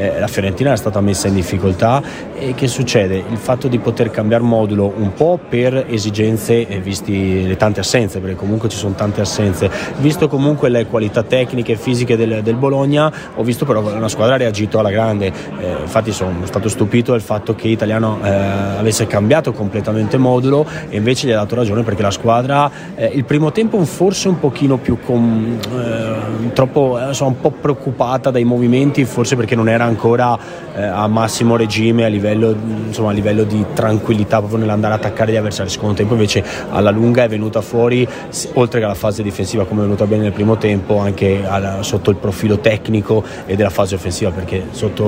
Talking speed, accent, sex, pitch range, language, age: 195 wpm, native, male, 105-120 Hz, Italian, 30-49